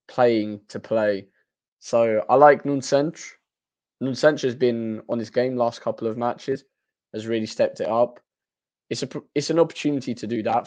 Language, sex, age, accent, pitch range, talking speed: English, male, 20-39, British, 110-140 Hz, 170 wpm